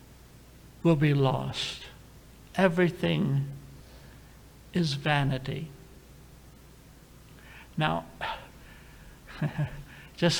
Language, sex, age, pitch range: English, male, 60-79, 140-180 Hz